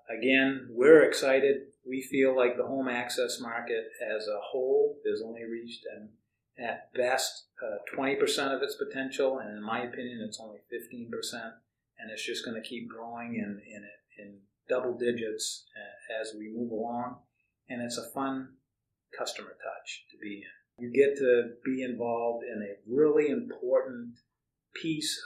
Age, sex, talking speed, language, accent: 50-69, male, 155 wpm, English, American